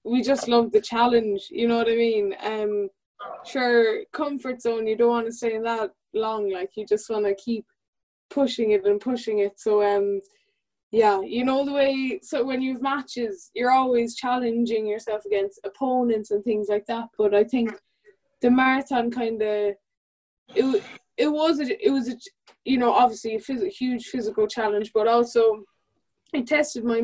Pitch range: 215-260 Hz